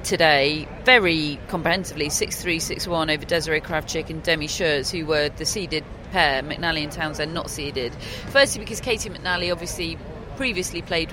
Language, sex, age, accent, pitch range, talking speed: English, female, 40-59, British, 150-175 Hz, 150 wpm